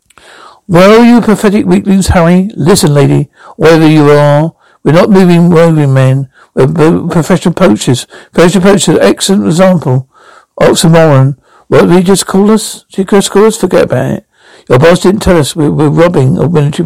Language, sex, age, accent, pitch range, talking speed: English, male, 60-79, British, 145-185 Hz, 190 wpm